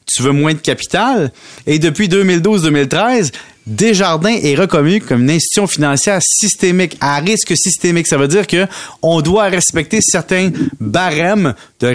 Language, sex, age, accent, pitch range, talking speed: French, male, 30-49, Canadian, 130-190 Hz, 140 wpm